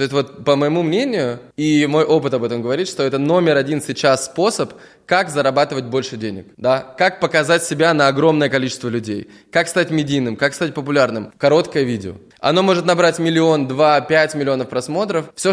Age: 20-39